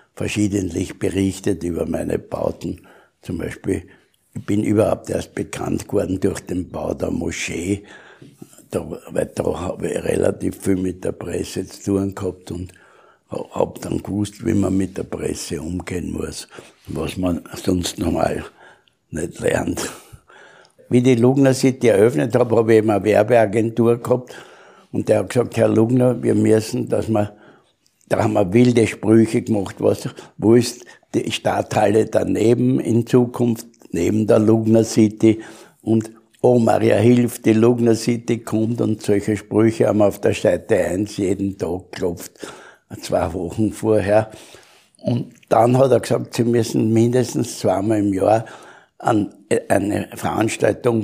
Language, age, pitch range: German, 60-79, 100-115 Hz